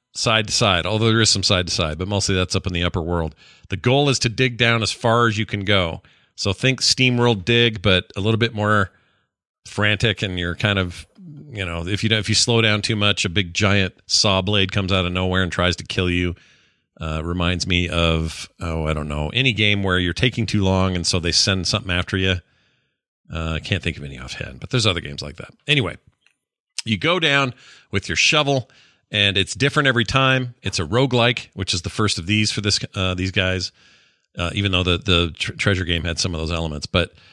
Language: English